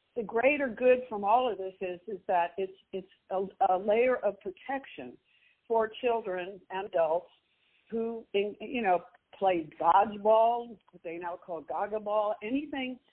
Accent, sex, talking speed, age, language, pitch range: American, female, 145 wpm, 60-79, English, 195-250 Hz